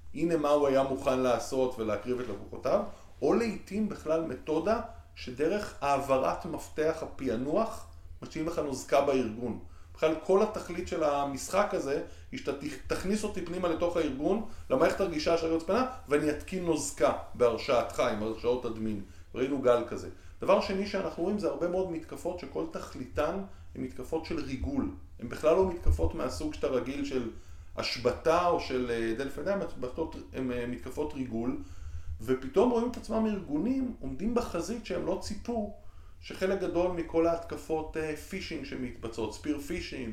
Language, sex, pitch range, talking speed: Hebrew, male, 120-175 Hz, 145 wpm